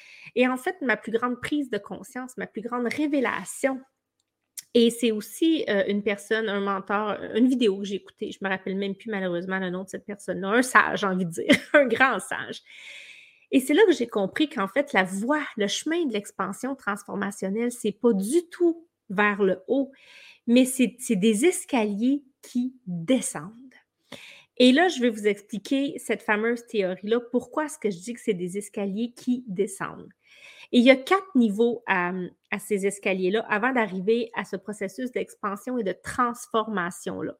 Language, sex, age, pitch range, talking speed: French, female, 30-49, 200-260 Hz, 185 wpm